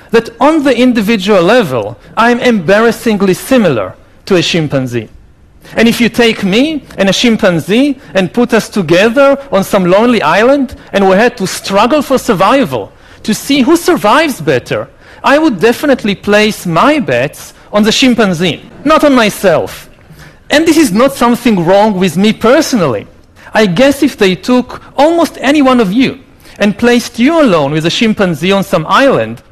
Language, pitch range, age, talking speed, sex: Malayalam, 180-245 Hz, 40-59, 165 wpm, male